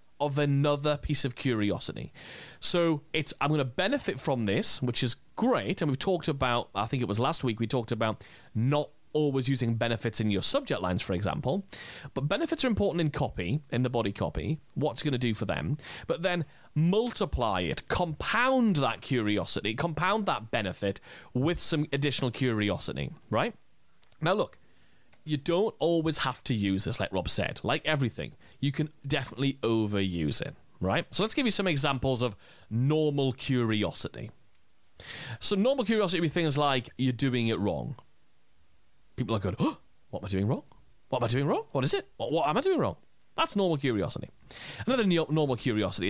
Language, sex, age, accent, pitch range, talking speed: English, male, 30-49, British, 110-160 Hz, 180 wpm